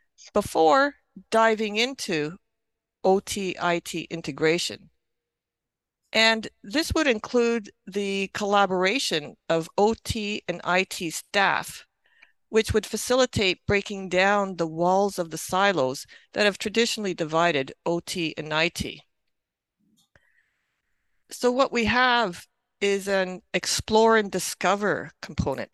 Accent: American